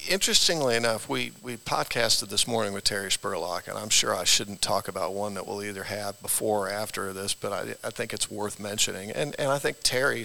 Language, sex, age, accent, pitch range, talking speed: English, male, 50-69, American, 105-125 Hz, 220 wpm